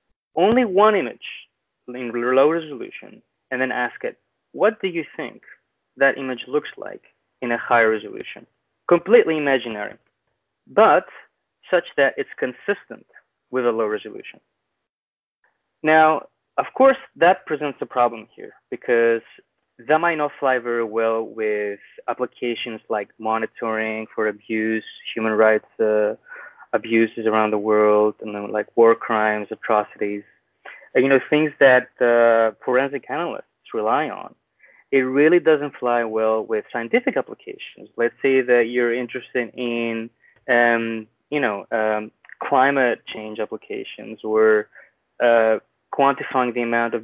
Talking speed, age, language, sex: 135 wpm, 20-39, English, male